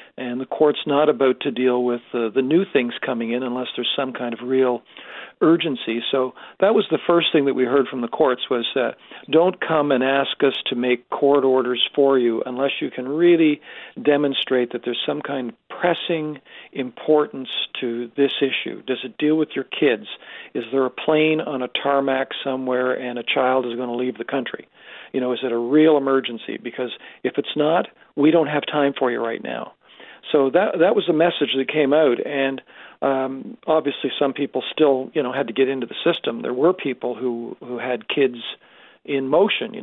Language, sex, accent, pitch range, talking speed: English, male, American, 125-150 Hz, 205 wpm